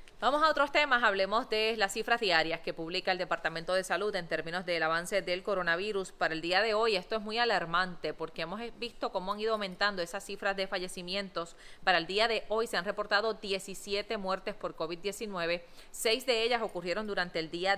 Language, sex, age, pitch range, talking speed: Spanish, female, 20-39, 175-210 Hz, 205 wpm